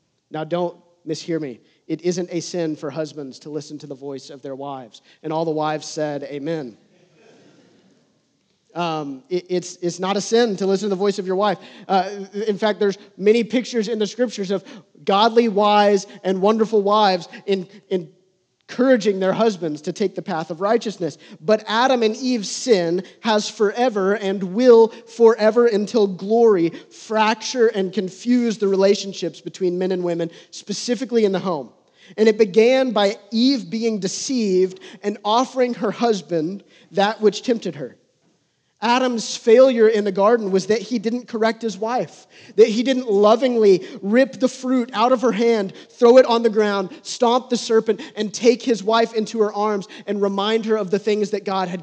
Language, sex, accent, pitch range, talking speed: English, male, American, 180-225 Hz, 175 wpm